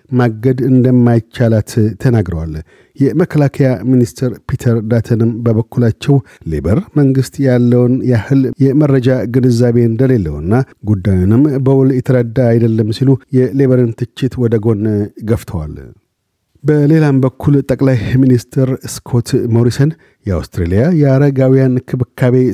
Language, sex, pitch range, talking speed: Amharic, male, 115-135 Hz, 90 wpm